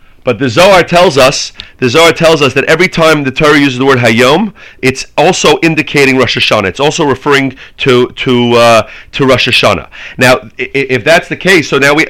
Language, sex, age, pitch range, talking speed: English, male, 30-49, 130-170 Hz, 200 wpm